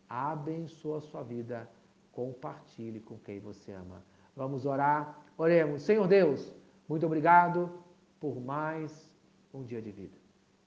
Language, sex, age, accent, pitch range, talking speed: Portuguese, male, 50-69, Brazilian, 135-205 Hz, 125 wpm